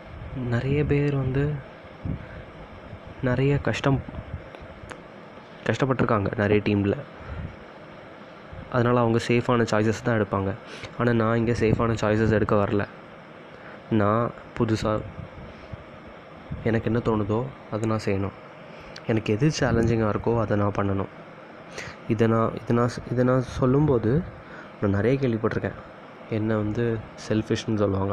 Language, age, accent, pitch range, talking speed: Tamil, 20-39, native, 105-125 Hz, 105 wpm